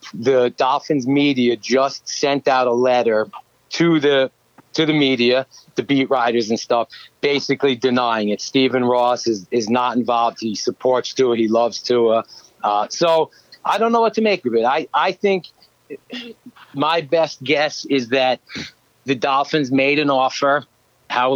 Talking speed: 160 wpm